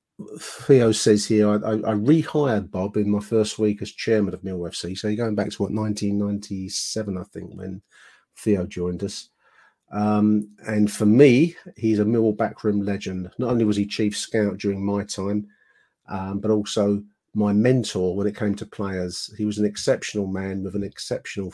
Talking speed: 185 wpm